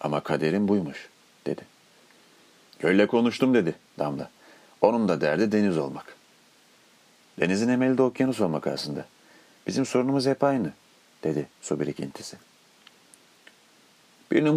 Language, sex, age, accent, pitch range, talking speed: Turkish, male, 40-59, native, 85-120 Hz, 110 wpm